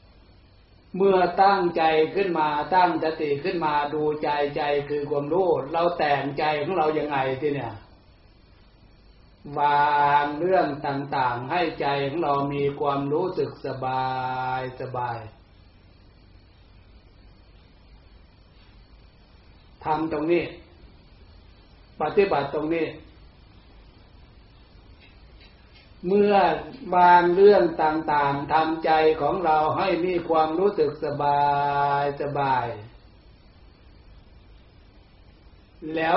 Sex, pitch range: male, 100-160 Hz